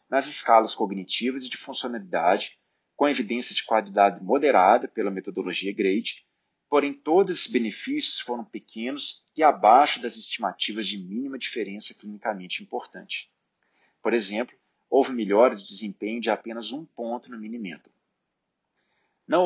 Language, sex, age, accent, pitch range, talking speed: Portuguese, male, 40-59, Brazilian, 105-135 Hz, 135 wpm